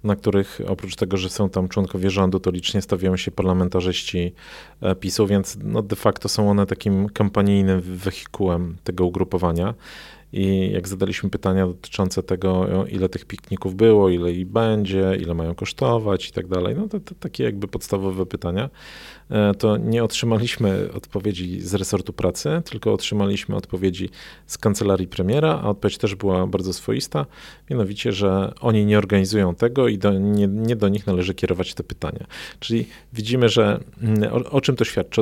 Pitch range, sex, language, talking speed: 95-110 Hz, male, Polish, 155 wpm